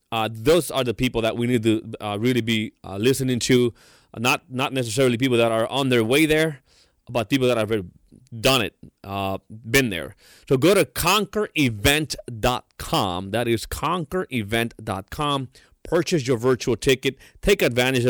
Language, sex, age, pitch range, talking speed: English, male, 30-49, 110-140 Hz, 160 wpm